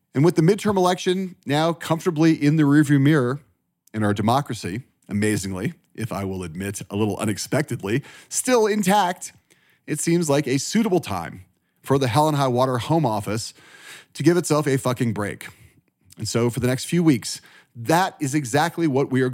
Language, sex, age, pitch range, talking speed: English, male, 40-59, 105-155 Hz, 175 wpm